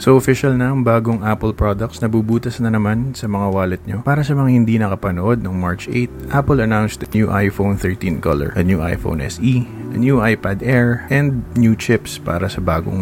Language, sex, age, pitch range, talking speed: Filipino, male, 20-39, 100-130 Hz, 200 wpm